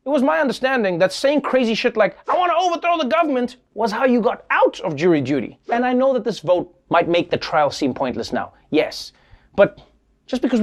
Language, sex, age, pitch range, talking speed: English, male, 30-49, 170-255 Hz, 225 wpm